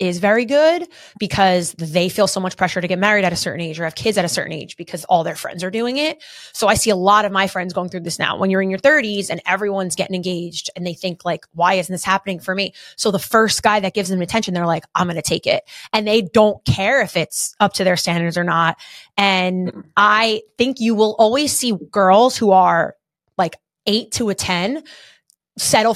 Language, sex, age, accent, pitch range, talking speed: English, female, 20-39, American, 180-220 Hz, 240 wpm